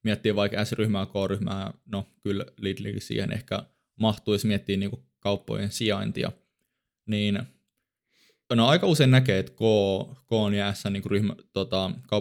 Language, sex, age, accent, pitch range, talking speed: Finnish, male, 20-39, native, 95-105 Hz, 125 wpm